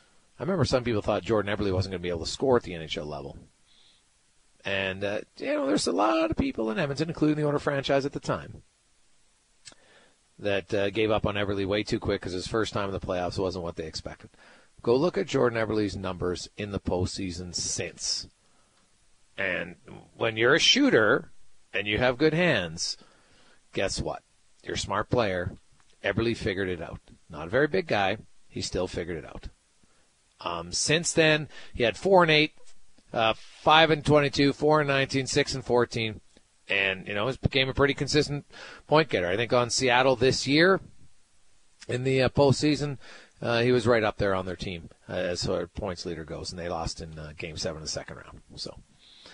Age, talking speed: 40-59, 190 wpm